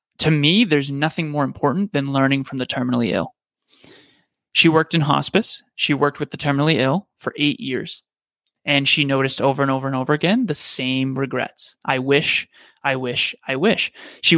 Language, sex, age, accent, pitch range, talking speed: English, male, 30-49, American, 135-155 Hz, 185 wpm